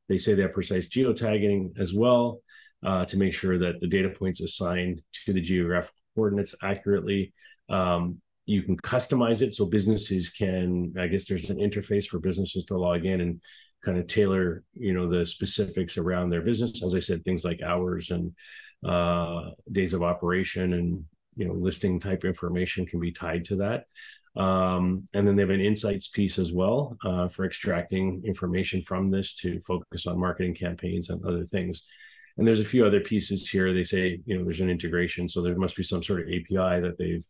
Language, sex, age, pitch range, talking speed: English, male, 30-49, 90-105 Hz, 195 wpm